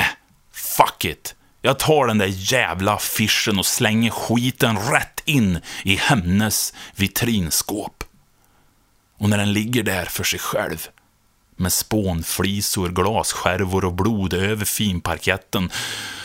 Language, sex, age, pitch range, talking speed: Swedish, male, 30-49, 95-120 Hz, 115 wpm